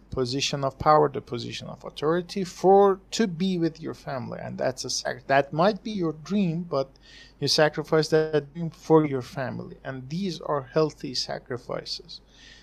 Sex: male